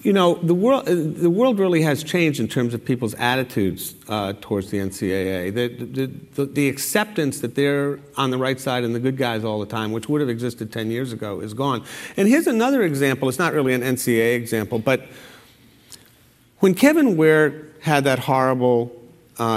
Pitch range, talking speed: 120-165 Hz, 185 wpm